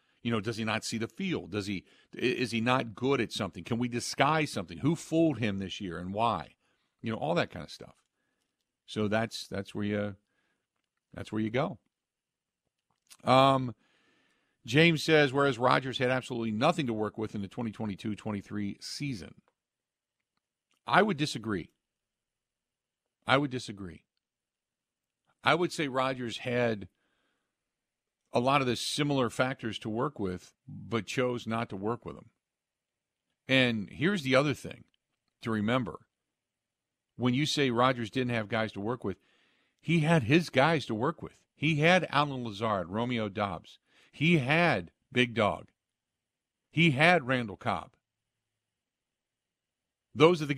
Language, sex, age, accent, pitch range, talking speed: English, male, 50-69, American, 110-145 Hz, 150 wpm